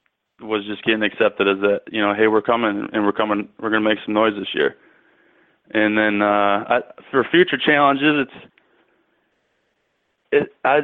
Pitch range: 105-120 Hz